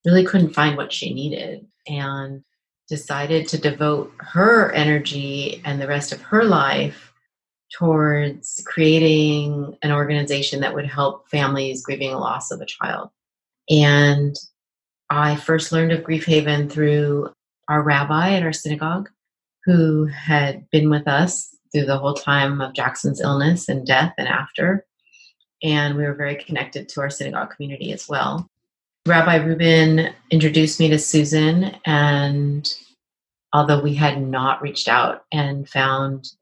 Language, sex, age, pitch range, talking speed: English, female, 30-49, 145-165 Hz, 145 wpm